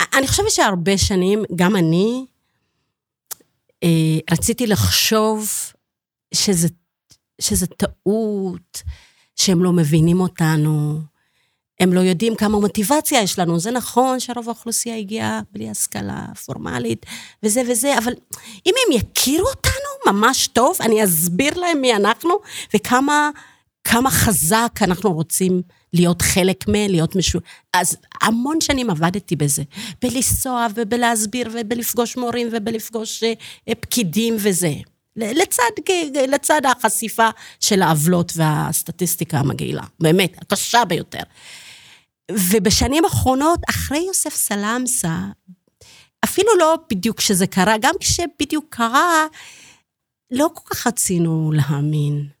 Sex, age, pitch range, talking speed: female, 30-49, 175-250 Hz, 110 wpm